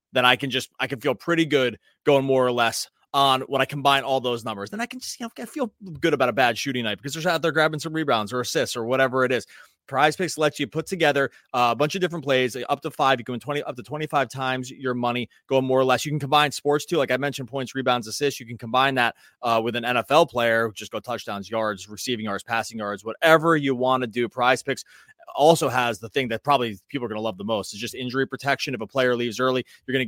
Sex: male